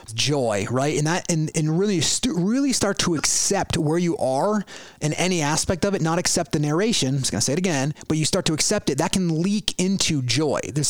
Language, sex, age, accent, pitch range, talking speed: English, male, 30-49, American, 145-180 Hz, 230 wpm